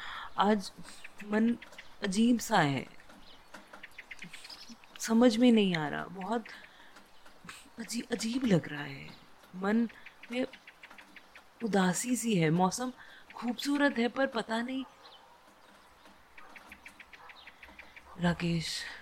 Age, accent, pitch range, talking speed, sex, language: 30-49, native, 175-235 Hz, 85 wpm, female, Hindi